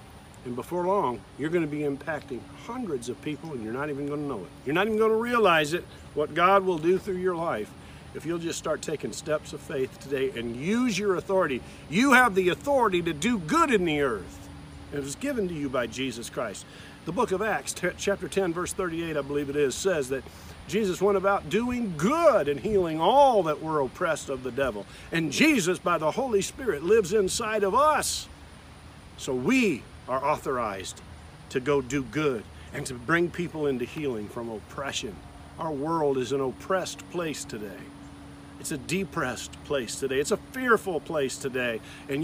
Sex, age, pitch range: male, 50-69, 135-200 Hz